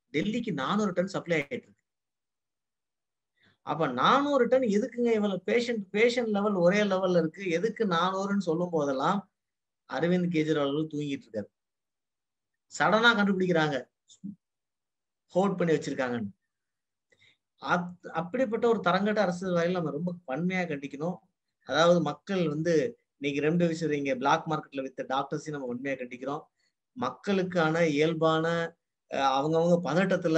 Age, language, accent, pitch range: 30-49, Tamil, native, 145-185 Hz